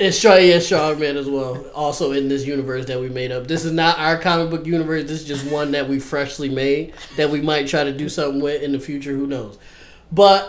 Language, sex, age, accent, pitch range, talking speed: English, male, 20-39, American, 130-160 Hz, 245 wpm